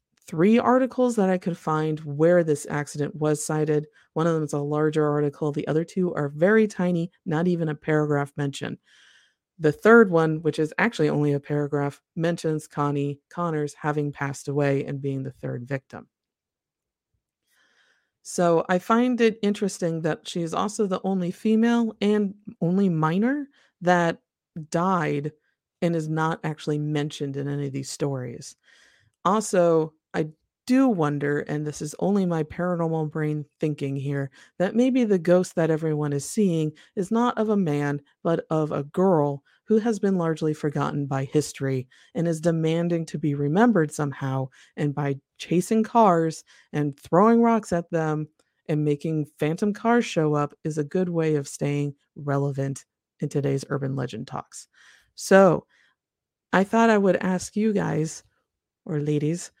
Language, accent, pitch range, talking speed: English, American, 145-185 Hz, 160 wpm